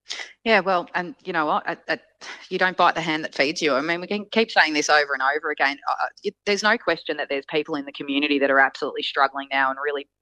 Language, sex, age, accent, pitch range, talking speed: English, female, 20-39, Australian, 140-160 Hz, 245 wpm